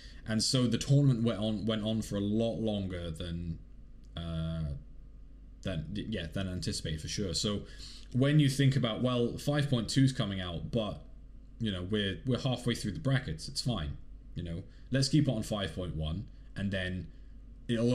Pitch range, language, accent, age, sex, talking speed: 95-125 Hz, English, British, 20-39, male, 170 wpm